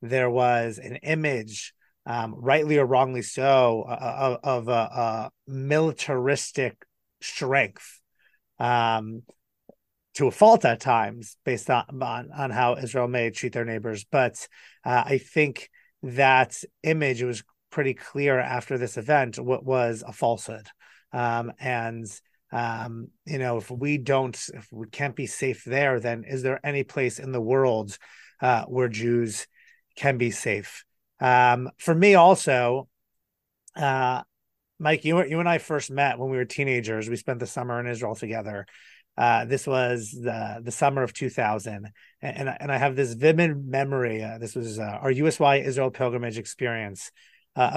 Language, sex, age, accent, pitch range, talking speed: English, male, 30-49, American, 120-145 Hz, 155 wpm